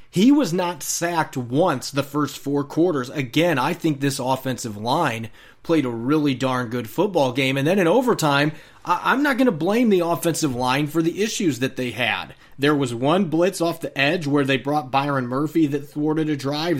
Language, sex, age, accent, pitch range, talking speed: English, male, 30-49, American, 130-160 Hz, 200 wpm